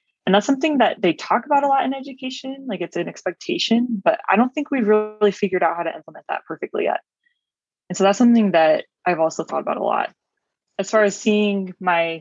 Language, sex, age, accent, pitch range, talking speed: English, female, 20-39, American, 160-215 Hz, 220 wpm